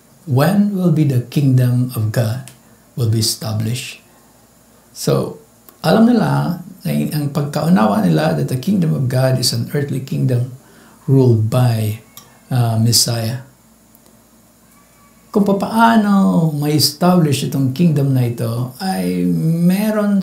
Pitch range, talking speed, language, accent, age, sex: 115-150 Hz, 115 wpm, English, Filipino, 60-79, male